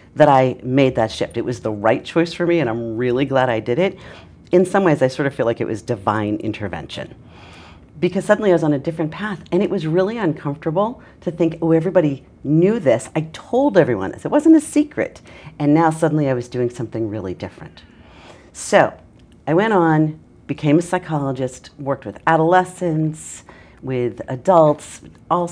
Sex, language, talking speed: female, English, 190 wpm